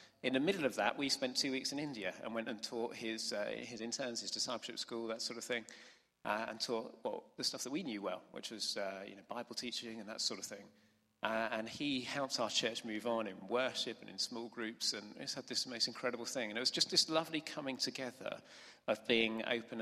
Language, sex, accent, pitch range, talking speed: English, male, British, 110-135 Hz, 240 wpm